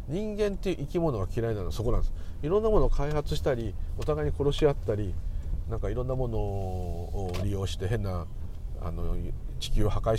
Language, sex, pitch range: Japanese, male, 75-110 Hz